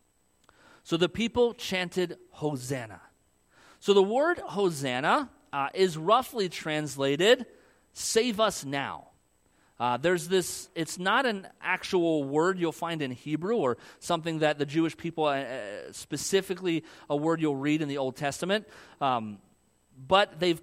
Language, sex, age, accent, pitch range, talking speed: English, male, 40-59, American, 150-200 Hz, 135 wpm